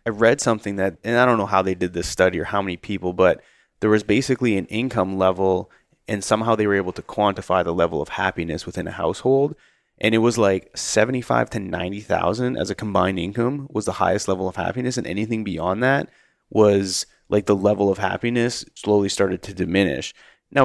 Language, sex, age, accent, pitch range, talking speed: English, male, 20-39, American, 95-110 Hz, 205 wpm